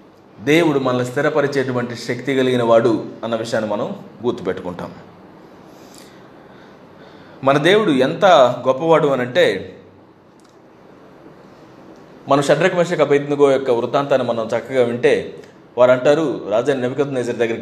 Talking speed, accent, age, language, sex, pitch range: 90 wpm, native, 30-49, Telugu, male, 125-160 Hz